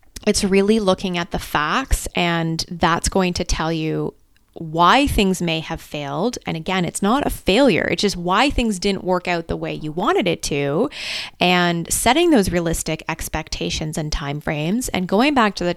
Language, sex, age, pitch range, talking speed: English, female, 20-39, 170-205 Hz, 185 wpm